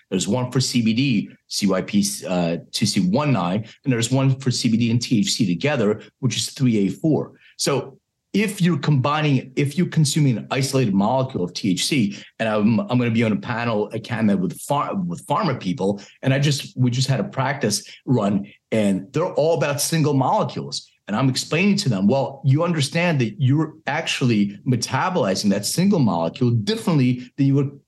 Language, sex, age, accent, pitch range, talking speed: English, male, 40-59, American, 115-155 Hz, 170 wpm